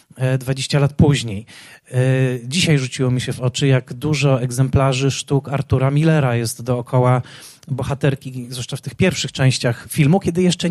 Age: 30-49